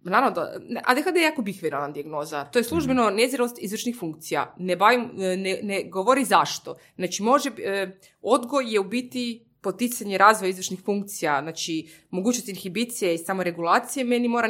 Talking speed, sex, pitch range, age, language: 155 wpm, female, 165-215 Hz, 20-39, Croatian